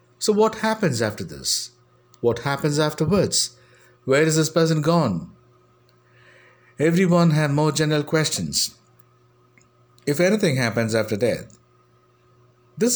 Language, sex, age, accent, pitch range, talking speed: English, male, 60-79, Indian, 120-155 Hz, 110 wpm